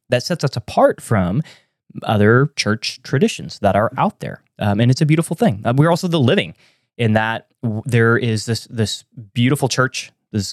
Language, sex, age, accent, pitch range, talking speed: English, male, 20-39, American, 105-125 Hz, 180 wpm